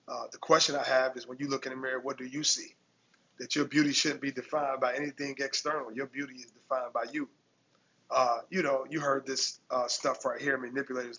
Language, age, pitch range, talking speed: English, 30-49, 130-145 Hz, 225 wpm